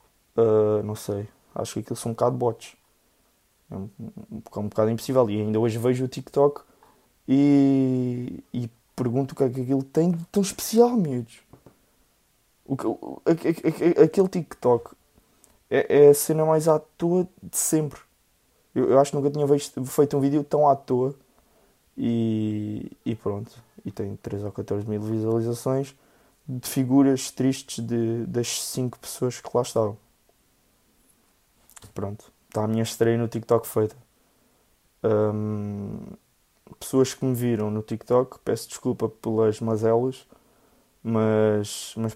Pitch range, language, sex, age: 110-135 Hz, Portuguese, male, 20-39